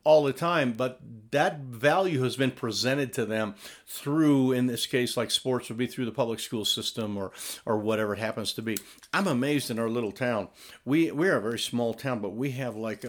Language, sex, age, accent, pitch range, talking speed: English, male, 50-69, American, 115-140 Hz, 220 wpm